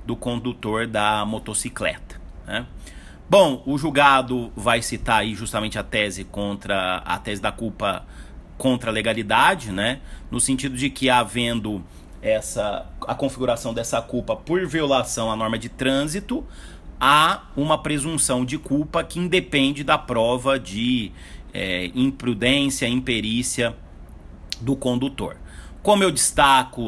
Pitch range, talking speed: 110-135 Hz, 125 wpm